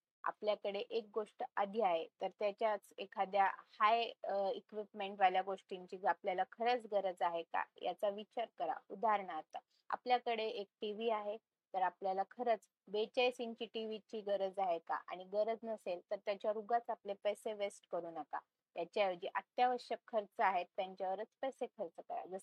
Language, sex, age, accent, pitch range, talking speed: Marathi, female, 20-39, native, 190-230 Hz, 75 wpm